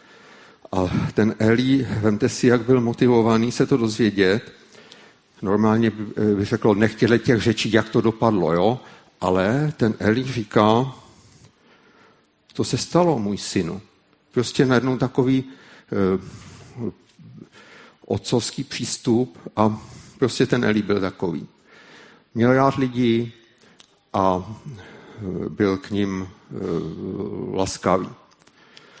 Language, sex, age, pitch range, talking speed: Czech, male, 50-69, 100-120 Hz, 105 wpm